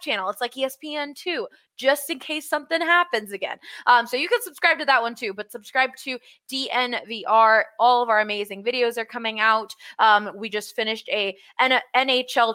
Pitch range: 220-280 Hz